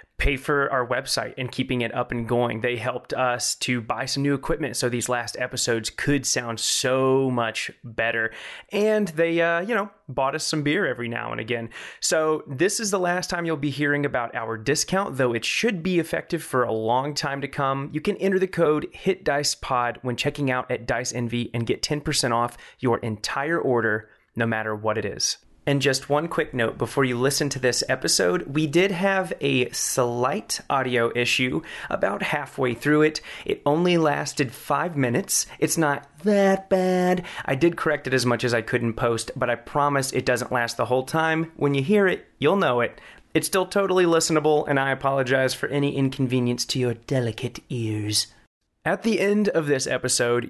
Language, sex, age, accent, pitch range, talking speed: English, male, 30-49, American, 120-155 Hz, 195 wpm